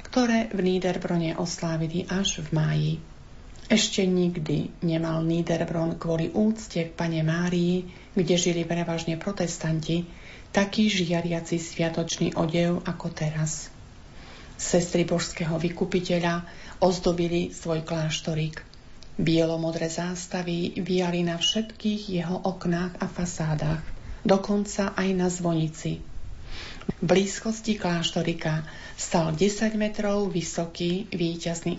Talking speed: 100 wpm